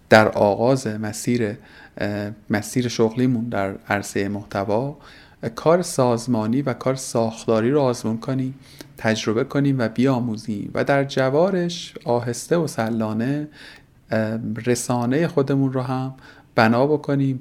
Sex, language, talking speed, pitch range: male, Persian, 110 wpm, 115-135 Hz